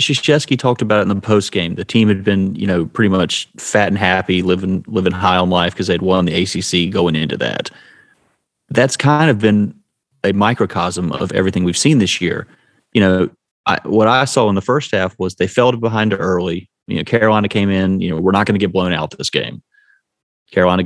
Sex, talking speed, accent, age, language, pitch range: male, 220 wpm, American, 30-49, English, 95-120 Hz